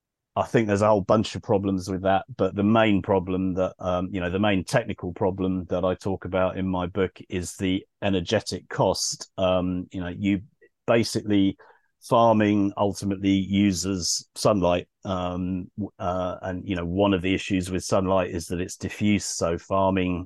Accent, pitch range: British, 90-100 Hz